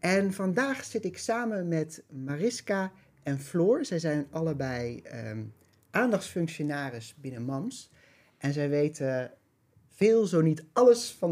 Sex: male